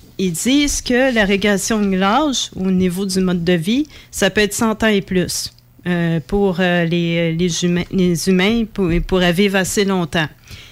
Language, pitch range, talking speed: French, 180-215 Hz, 190 wpm